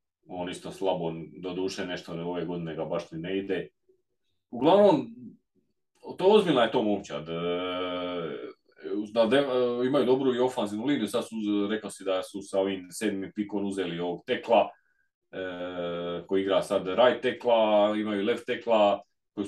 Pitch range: 95-110 Hz